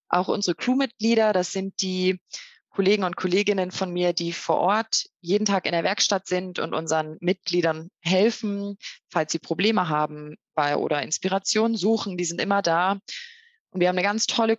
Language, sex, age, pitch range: German, female, 20-39, 170-220 Hz